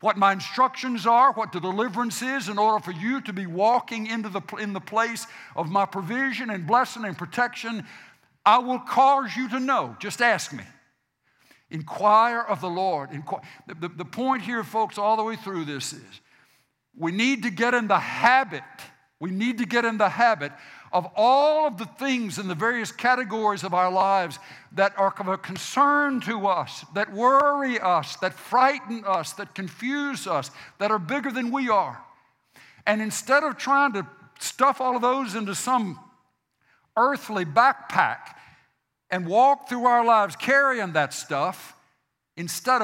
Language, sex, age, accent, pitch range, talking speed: English, male, 60-79, American, 170-235 Hz, 170 wpm